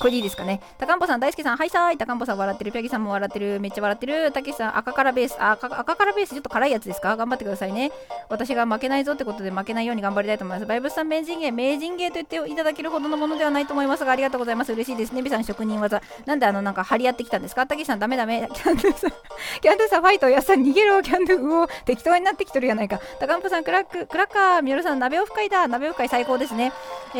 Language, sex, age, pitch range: Japanese, female, 20-39, 230-325 Hz